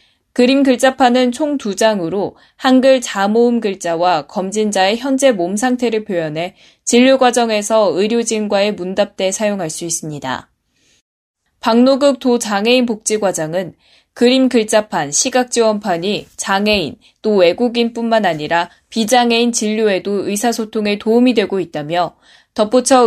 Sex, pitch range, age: female, 185-240 Hz, 10-29